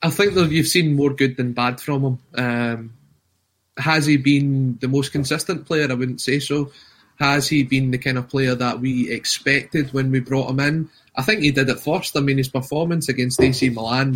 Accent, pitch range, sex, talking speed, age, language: British, 125-145 Hz, male, 215 wpm, 20-39, English